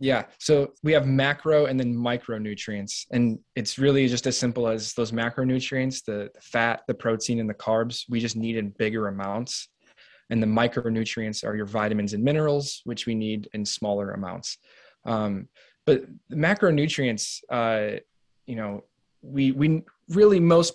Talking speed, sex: 160 wpm, male